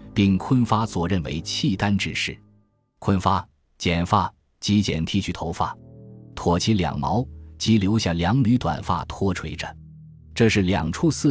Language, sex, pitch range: Chinese, male, 85-115 Hz